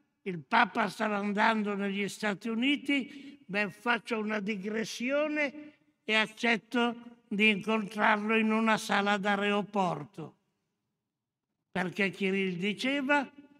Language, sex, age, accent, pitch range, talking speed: Italian, male, 60-79, native, 190-225 Hz, 95 wpm